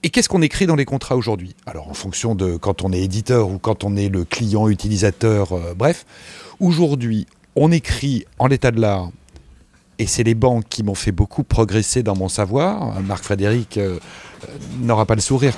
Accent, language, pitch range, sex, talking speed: French, French, 105-155 Hz, male, 195 wpm